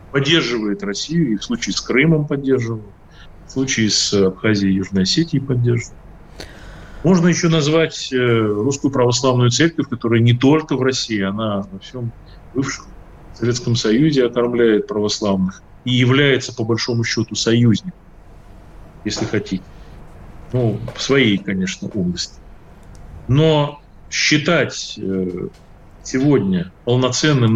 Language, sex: Russian, male